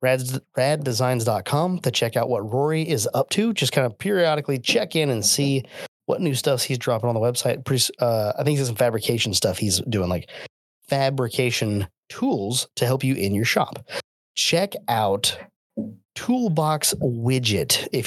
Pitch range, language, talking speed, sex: 115-140 Hz, English, 165 wpm, male